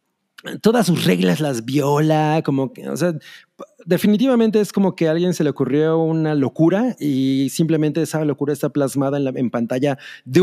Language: Spanish